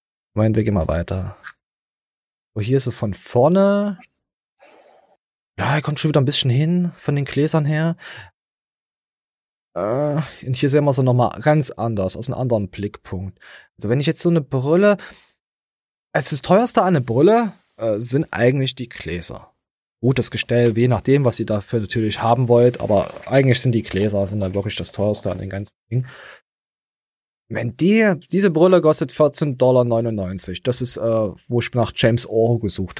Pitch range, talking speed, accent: 105-150 Hz, 170 wpm, German